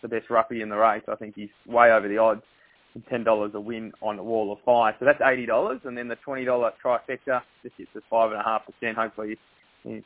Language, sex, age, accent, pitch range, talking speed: English, male, 20-39, Australian, 110-120 Hz, 215 wpm